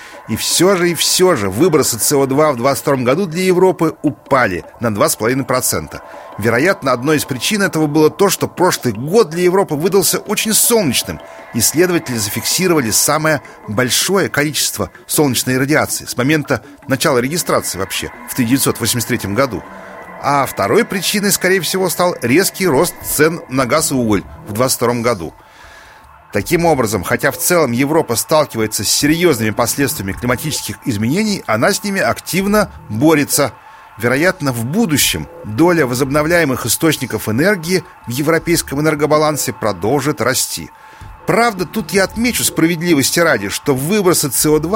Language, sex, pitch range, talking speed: Russian, male, 125-175 Hz, 135 wpm